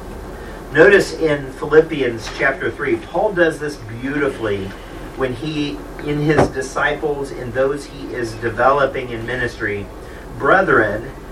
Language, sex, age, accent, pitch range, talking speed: English, male, 40-59, American, 125-170 Hz, 115 wpm